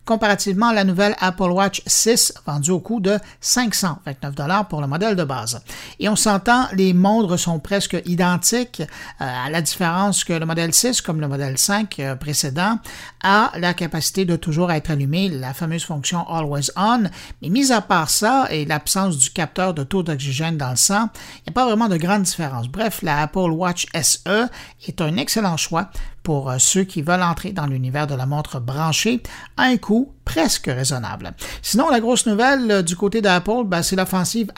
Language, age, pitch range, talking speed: French, 60-79, 155-205 Hz, 185 wpm